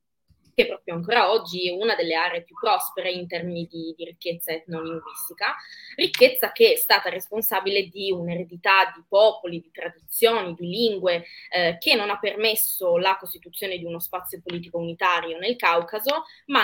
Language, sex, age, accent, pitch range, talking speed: Italian, female, 20-39, native, 175-215 Hz, 160 wpm